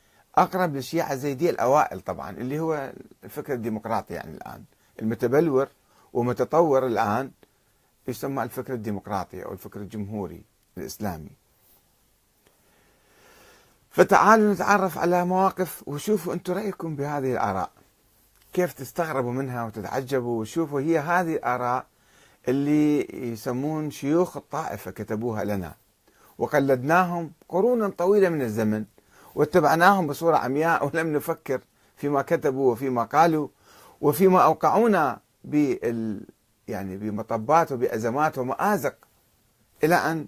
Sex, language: male, Arabic